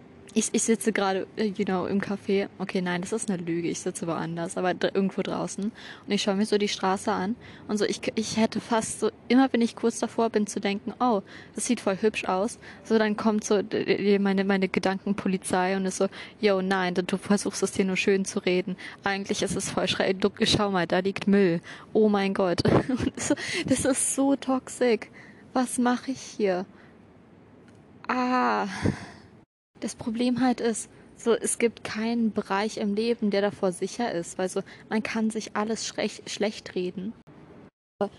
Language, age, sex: German, 20-39, female